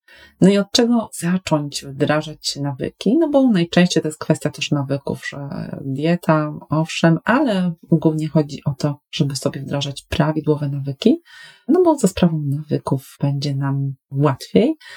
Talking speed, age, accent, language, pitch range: 145 wpm, 30-49, native, Polish, 150-175 Hz